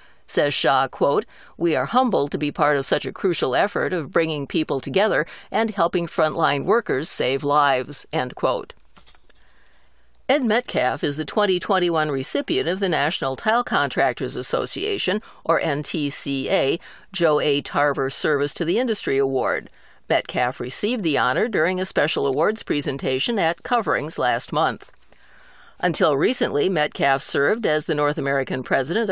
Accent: American